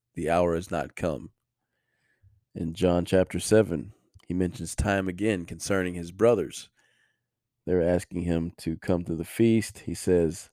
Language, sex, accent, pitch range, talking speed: English, male, American, 85-110 Hz, 150 wpm